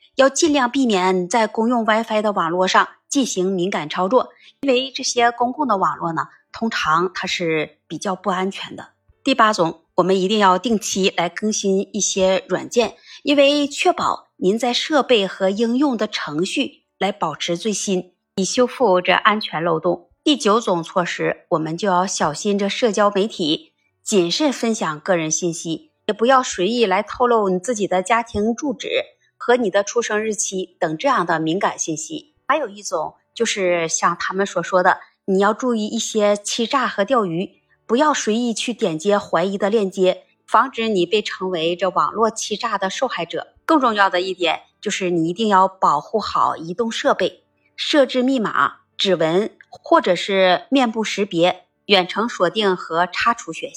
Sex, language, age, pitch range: female, Chinese, 30-49, 185-235 Hz